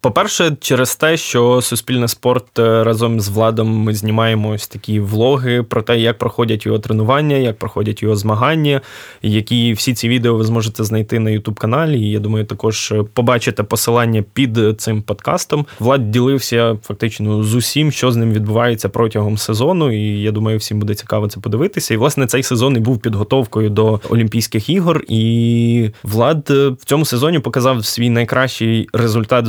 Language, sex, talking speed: Ukrainian, male, 165 wpm